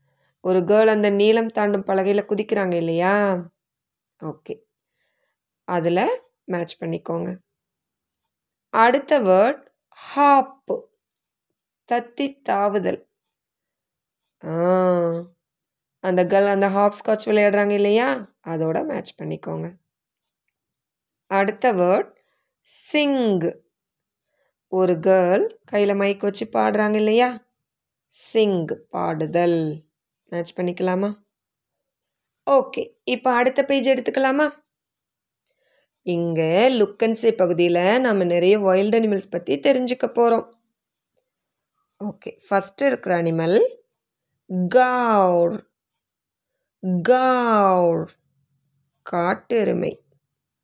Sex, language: female, Tamil